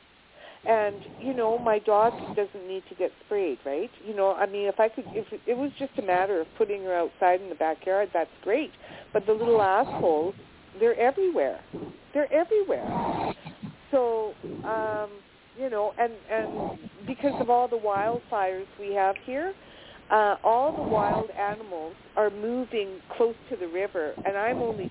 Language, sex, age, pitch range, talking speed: English, female, 50-69, 205-280 Hz, 170 wpm